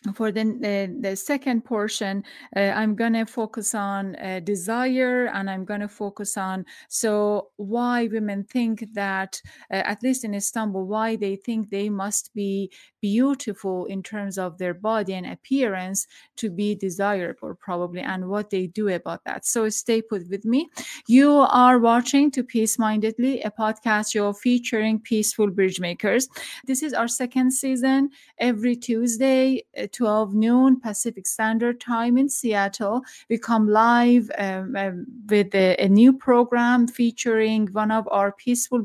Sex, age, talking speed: female, 30-49, 155 wpm